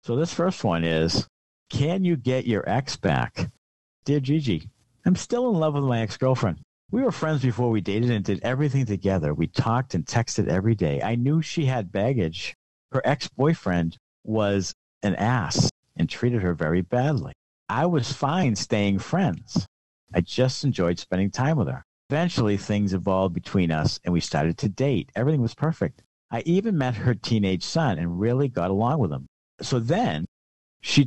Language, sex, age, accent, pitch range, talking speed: English, male, 50-69, American, 95-140 Hz, 175 wpm